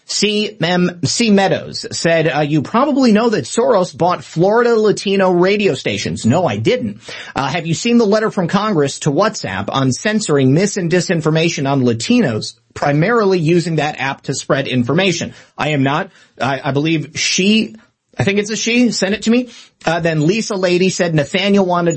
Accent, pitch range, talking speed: American, 140-190 Hz, 180 wpm